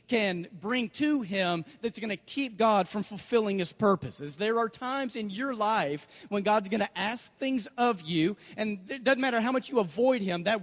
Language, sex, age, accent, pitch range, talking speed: English, male, 40-59, American, 205-260 Hz, 210 wpm